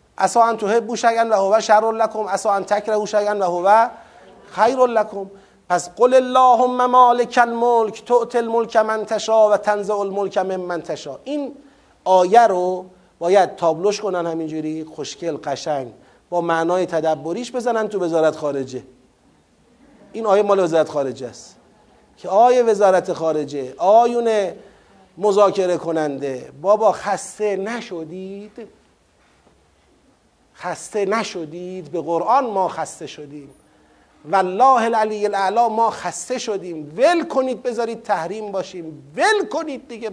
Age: 30-49